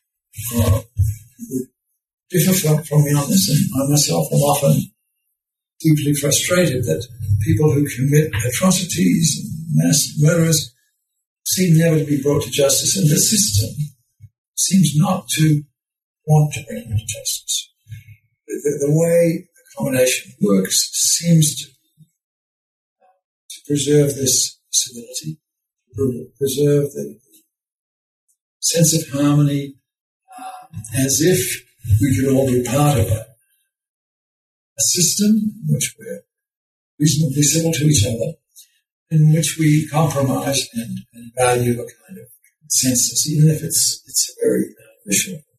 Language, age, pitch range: English, 60-79, 125-170 Hz